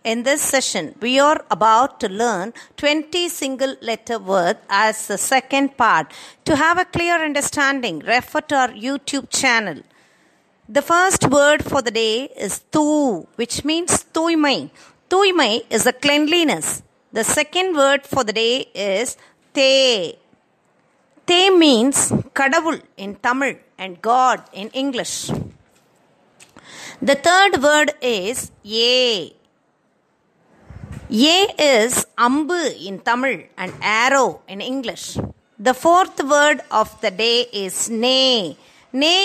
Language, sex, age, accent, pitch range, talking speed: Tamil, female, 50-69, native, 235-315 Hz, 125 wpm